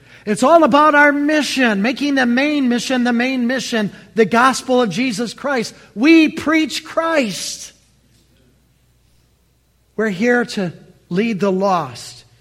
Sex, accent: male, American